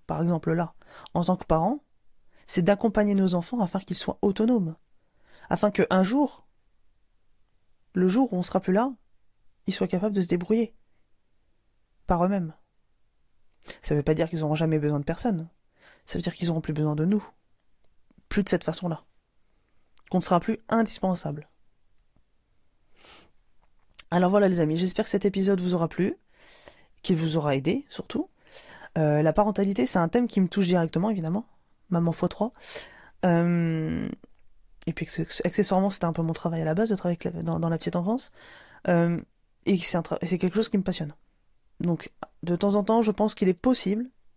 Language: French